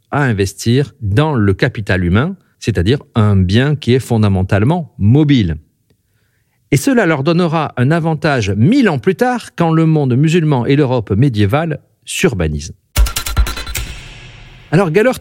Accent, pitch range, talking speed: French, 110-160 Hz, 130 wpm